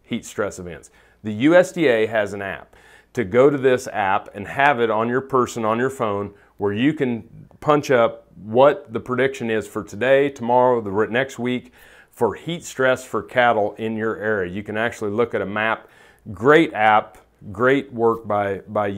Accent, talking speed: American, 185 wpm